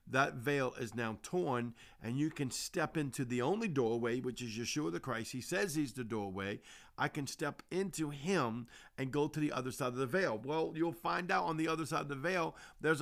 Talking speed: 225 wpm